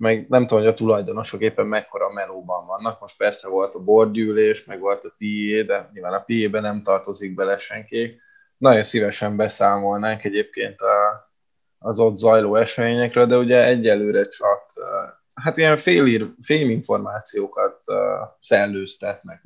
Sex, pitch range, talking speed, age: male, 105-125 Hz, 135 wpm, 20-39